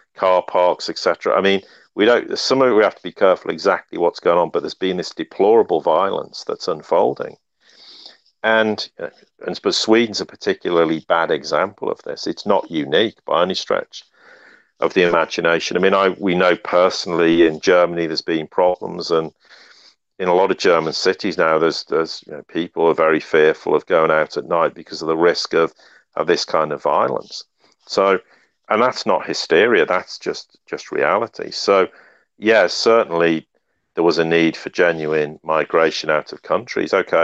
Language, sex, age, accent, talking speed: English, male, 50-69, British, 175 wpm